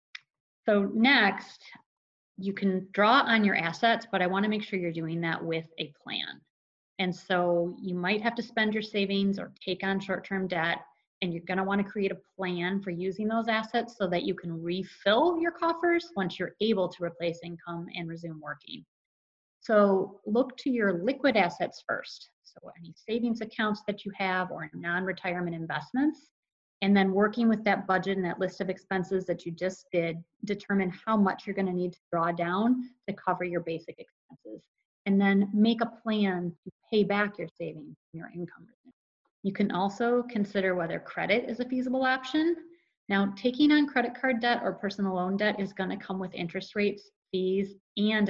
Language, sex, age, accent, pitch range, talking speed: English, female, 30-49, American, 180-220 Hz, 185 wpm